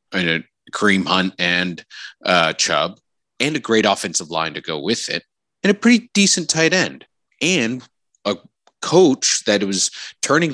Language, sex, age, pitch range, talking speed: English, male, 30-49, 115-165 Hz, 170 wpm